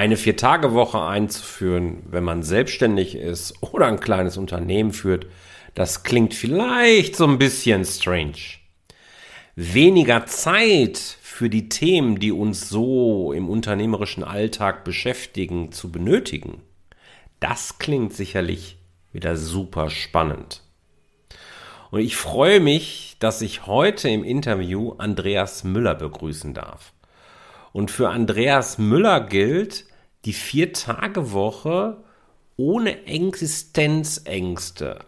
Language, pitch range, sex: German, 90-150 Hz, male